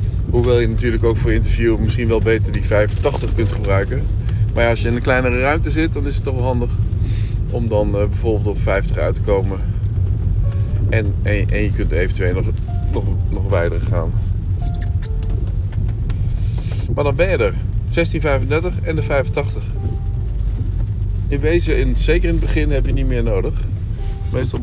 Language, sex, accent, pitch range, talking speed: English, male, Dutch, 100-110 Hz, 170 wpm